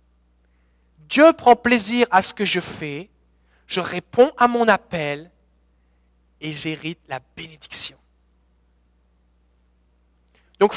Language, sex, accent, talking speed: French, male, French, 100 wpm